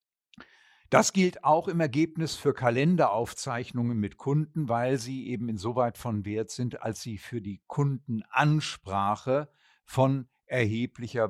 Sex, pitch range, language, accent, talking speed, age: male, 110-150 Hz, German, German, 120 wpm, 50-69